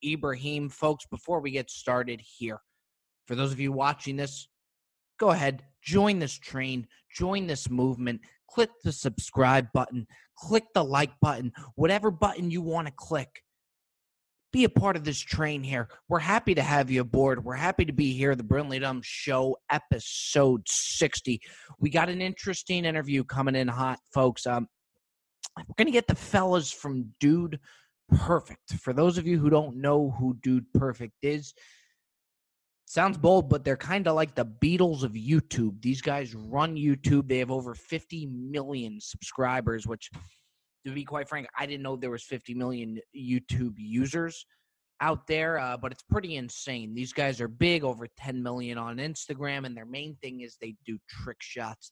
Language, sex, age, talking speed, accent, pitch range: English, male, 20-39, 170 wpm, American, 125-155 Hz